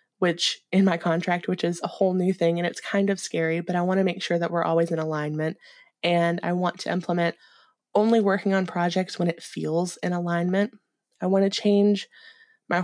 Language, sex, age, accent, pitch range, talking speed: English, female, 20-39, American, 170-210 Hz, 210 wpm